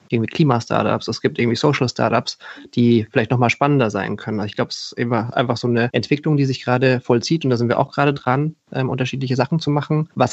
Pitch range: 115-130 Hz